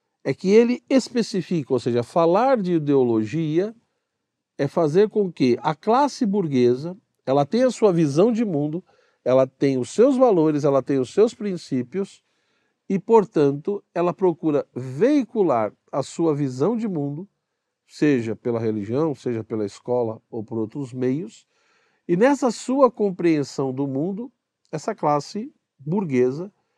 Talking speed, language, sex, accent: 140 wpm, Portuguese, male, Brazilian